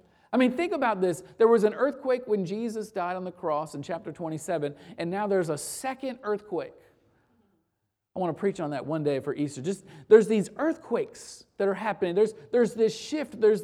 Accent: American